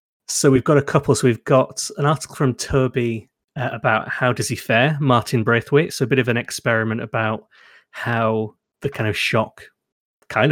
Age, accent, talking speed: 30-49, British, 190 wpm